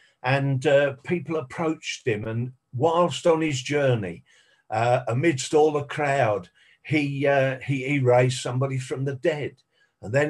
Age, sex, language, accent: 50-69, male, English, British